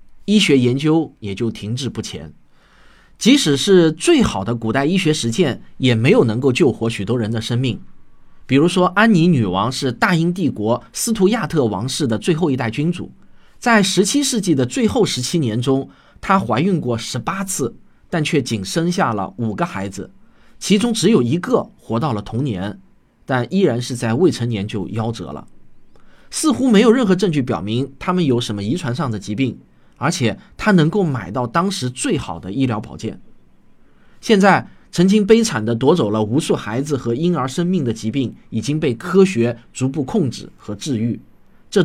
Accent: native